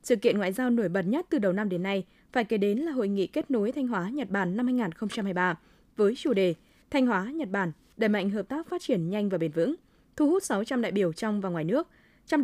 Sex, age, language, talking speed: female, 20-39, Vietnamese, 255 wpm